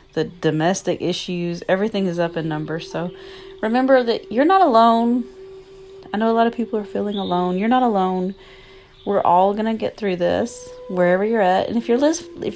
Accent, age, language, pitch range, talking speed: American, 30-49, English, 170-285 Hz, 190 wpm